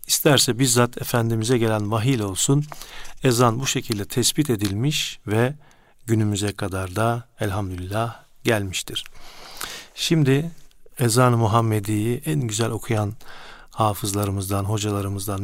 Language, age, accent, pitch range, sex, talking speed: Turkish, 50-69, native, 105-130 Hz, male, 95 wpm